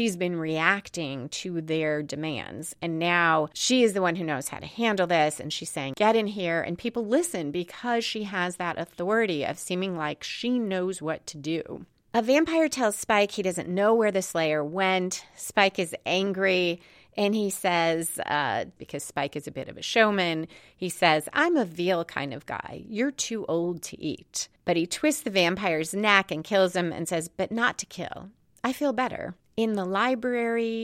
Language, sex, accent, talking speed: English, female, American, 195 wpm